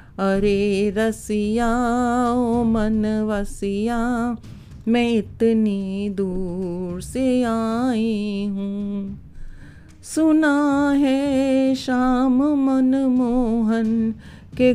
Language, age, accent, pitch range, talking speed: Hindi, 40-59, native, 200-235 Hz, 65 wpm